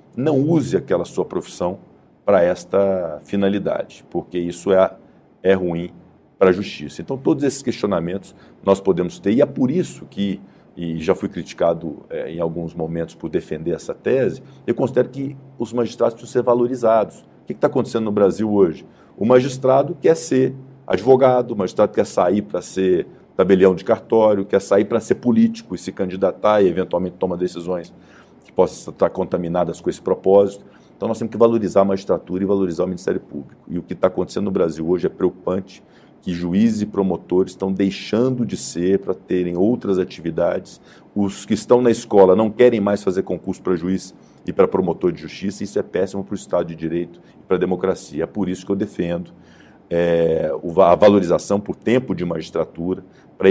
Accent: Brazilian